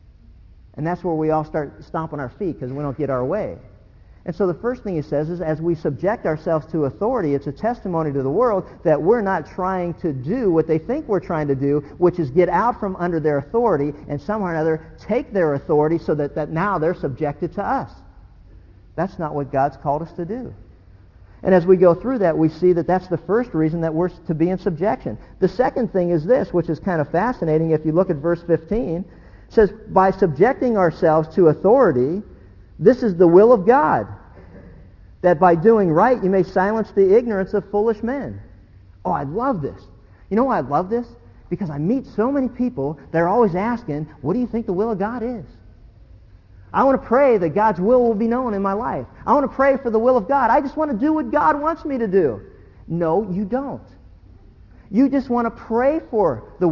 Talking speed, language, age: 220 wpm, English, 50-69